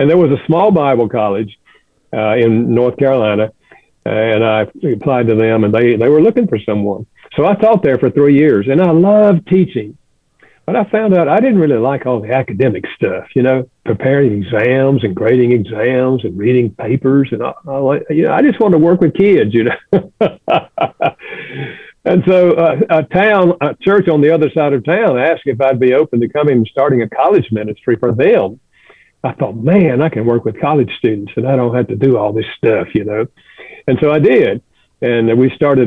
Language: English